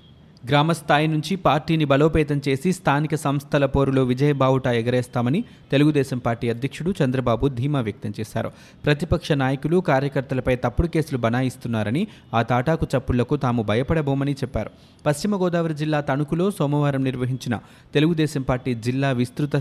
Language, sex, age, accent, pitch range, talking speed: Telugu, male, 30-49, native, 125-150 Hz, 120 wpm